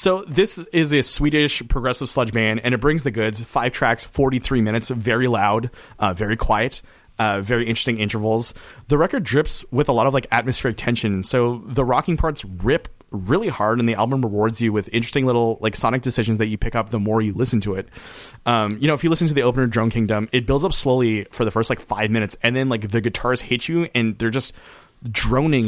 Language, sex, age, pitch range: English, male, 30-49, 110-130 Hz